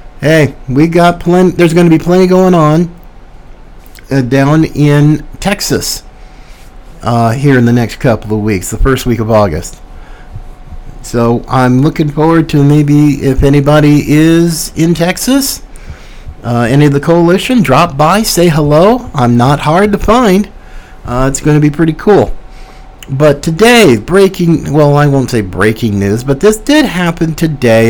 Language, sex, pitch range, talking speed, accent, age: English, male, 130-180 Hz, 155 wpm, American, 50-69